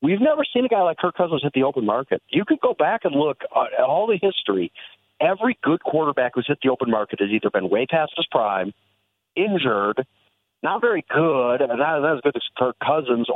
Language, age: English, 50-69